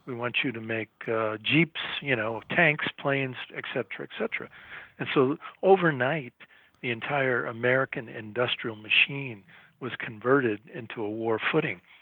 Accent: American